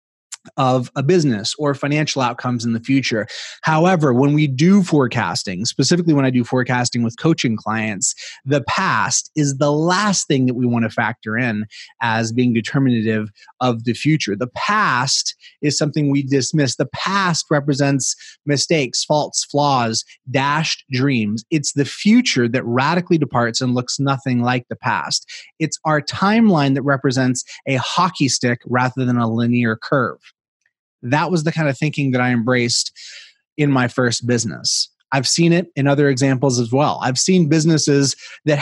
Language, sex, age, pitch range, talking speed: English, male, 30-49, 125-150 Hz, 160 wpm